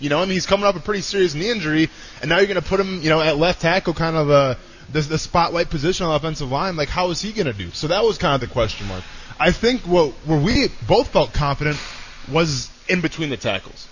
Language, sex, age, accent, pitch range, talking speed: English, male, 20-39, American, 130-170 Hz, 270 wpm